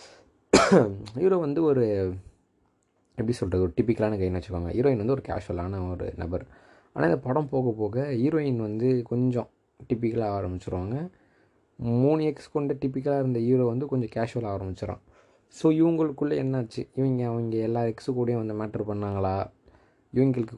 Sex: male